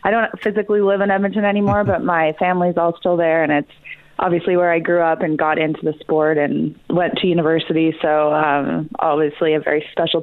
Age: 20-39